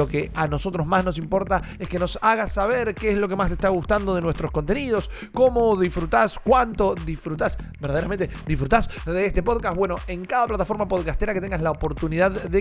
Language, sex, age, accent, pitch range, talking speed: Spanish, male, 30-49, Argentinian, 170-205 Hz, 200 wpm